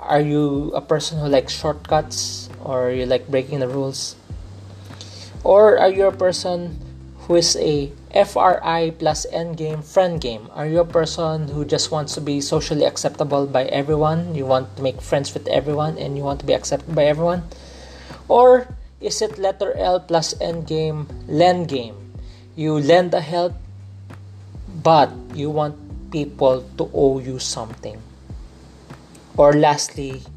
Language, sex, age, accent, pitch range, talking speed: English, male, 20-39, Filipino, 105-155 Hz, 155 wpm